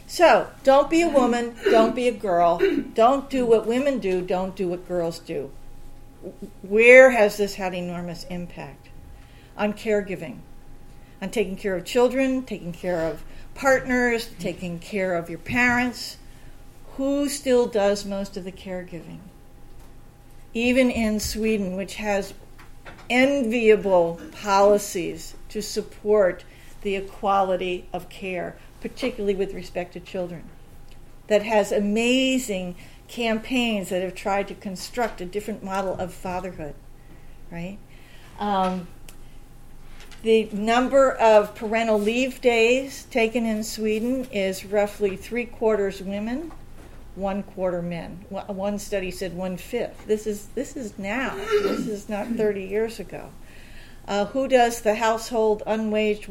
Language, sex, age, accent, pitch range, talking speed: English, female, 50-69, American, 180-230 Hz, 125 wpm